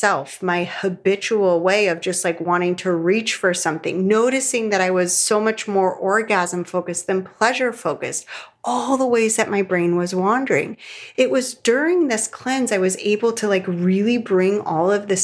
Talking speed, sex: 185 wpm, female